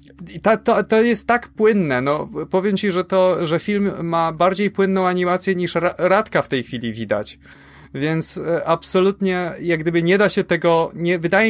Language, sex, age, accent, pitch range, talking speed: Polish, male, 20-39, native, 135-180 Hz, 190 wpm